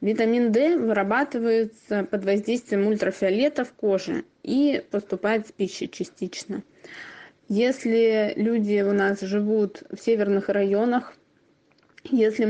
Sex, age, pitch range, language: female, 20-39, 195-230 Hz, Russian